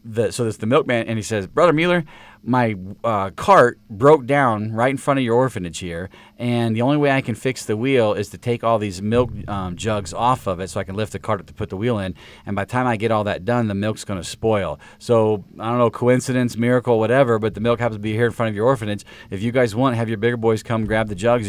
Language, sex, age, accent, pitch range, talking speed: English, male, 40-59, American, 105-125 Hz, 275 wpm